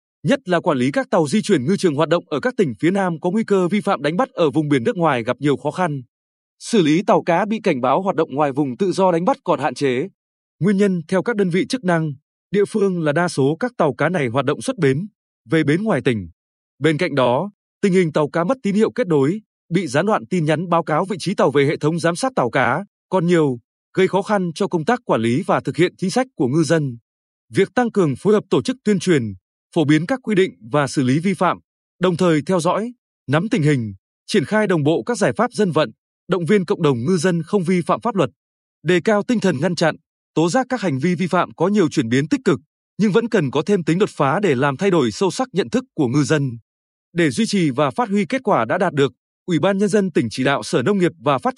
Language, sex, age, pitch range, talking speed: Vietnamese, male, 20-39, 150-205 Hz, 270 wpm